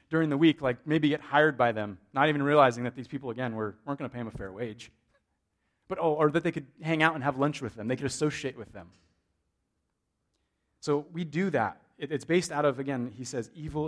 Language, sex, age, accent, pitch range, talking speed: English, male, 30-49, American, 125-180 Hz, 240 wpm